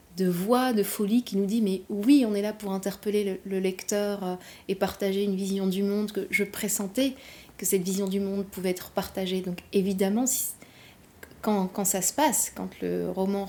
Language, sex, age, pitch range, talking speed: French, female, 30-49, 185-215 Hz, 205 wpm